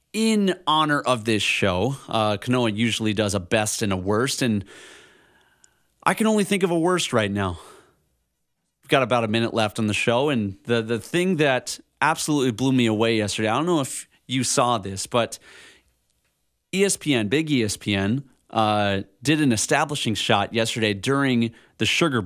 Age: 30-49